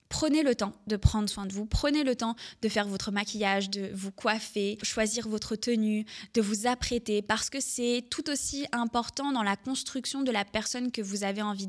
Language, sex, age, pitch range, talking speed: French, female, 20-39, 205-245 Hz, 205 wpm